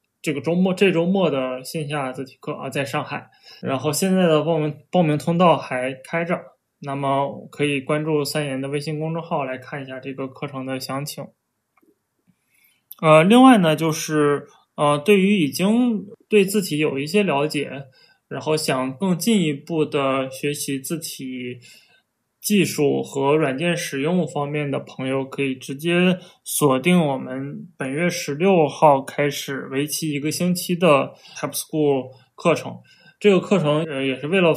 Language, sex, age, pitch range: Chinese, male, 20-39, 140-175 Hz